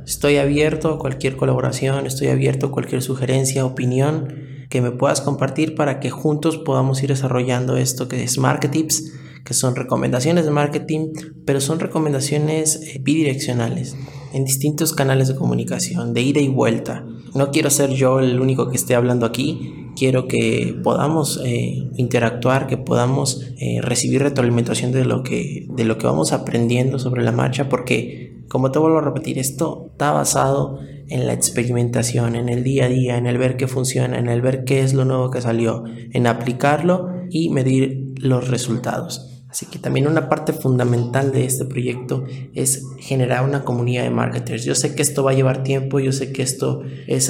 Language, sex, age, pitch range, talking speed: Spanish, male, 20-39, 120-140 Hz, 180 wpm